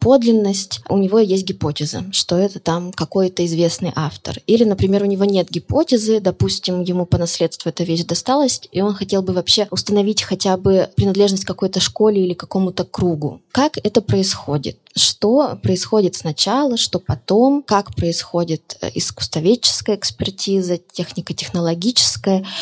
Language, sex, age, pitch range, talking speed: Russian, female, 20-39, 175-205 Hz, 140 wpm